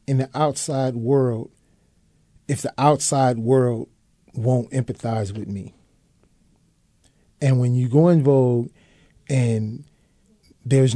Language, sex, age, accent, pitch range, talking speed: English, male, 40-59, American, 115-140 Hz, 110 wpm